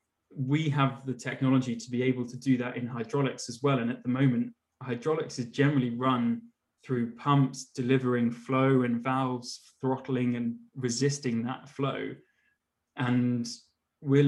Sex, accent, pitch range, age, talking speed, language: male, British, 120-135 Hz, 20-39, 145 wpm, English